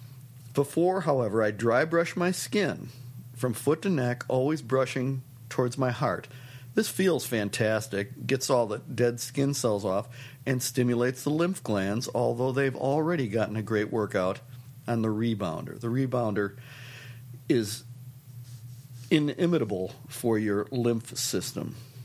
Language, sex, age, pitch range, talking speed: English, male, 50-69, 120-140 Hz, 135 wpm